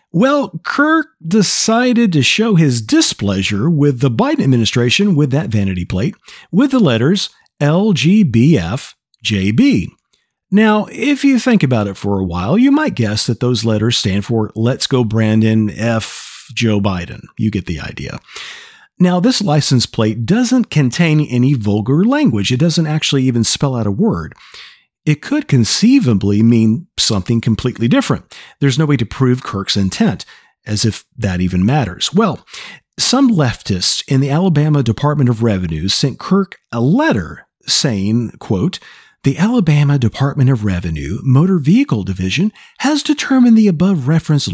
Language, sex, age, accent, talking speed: English, male, 50-69, American, 145 wpm